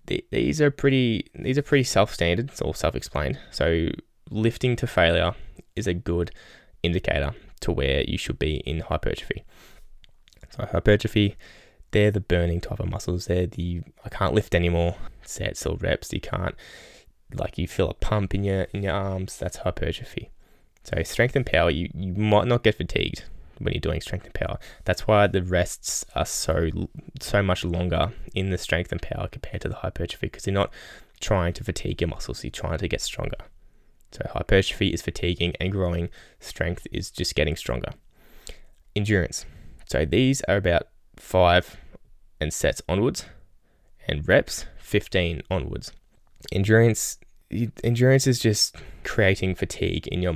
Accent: Australian